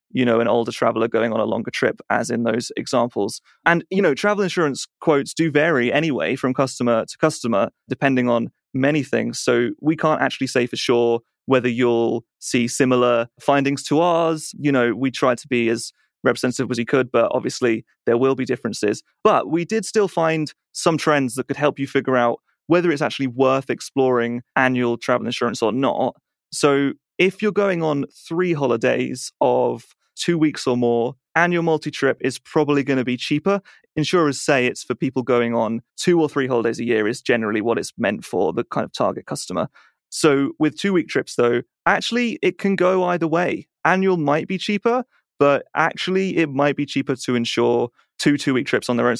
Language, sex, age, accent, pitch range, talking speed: English, male, 30-49, British, 125-155 Hz, 195 wpm